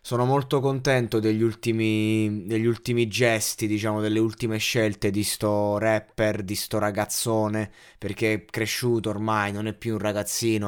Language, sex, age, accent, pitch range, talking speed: Italian, male, 20-39, native, 105-125 Hz, 150 wpm